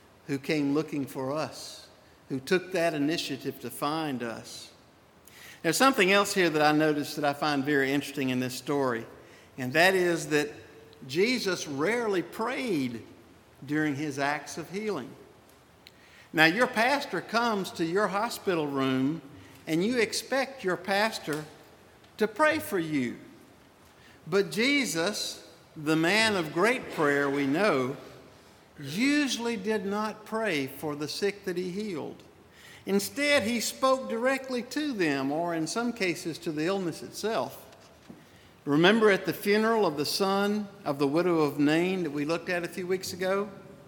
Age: 60-79